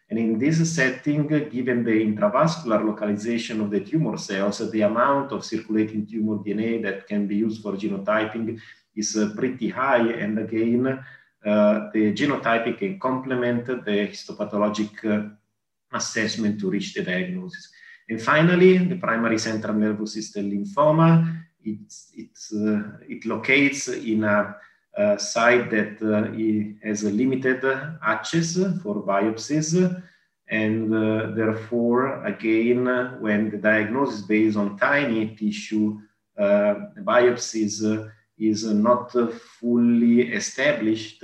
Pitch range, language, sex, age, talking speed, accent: 105-125 Hz, English, male, 40-59, 130 wpm, Italian